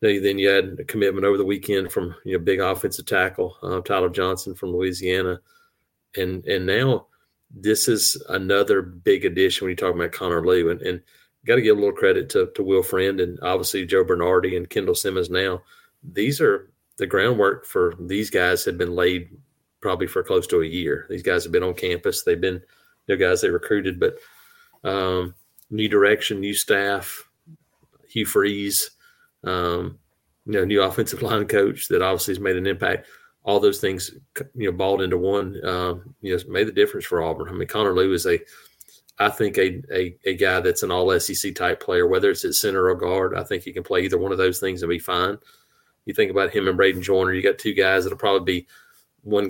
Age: 30-49